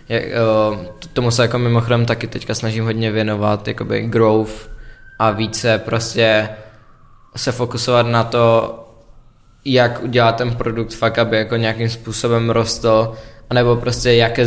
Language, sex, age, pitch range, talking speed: Czech, male, 20-39, 110-120 Hz, 130 wpm